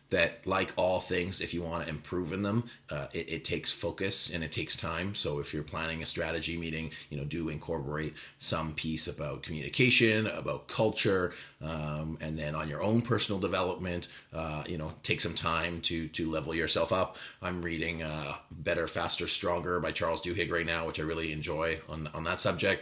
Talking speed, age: 195 wpm, 30-49